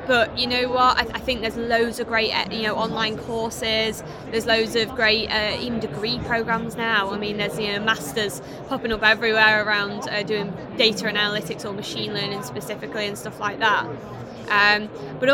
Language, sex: English, female